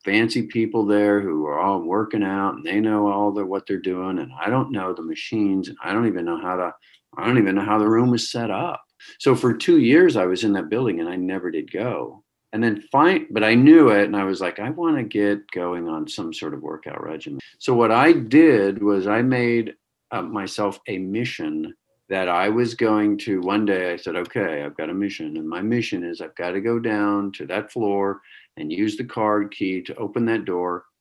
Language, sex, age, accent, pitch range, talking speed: English, male, 50-69, American, 95-120 Hz, 235 wpm